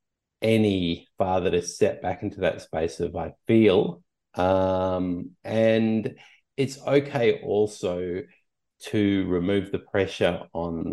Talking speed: 115 wpm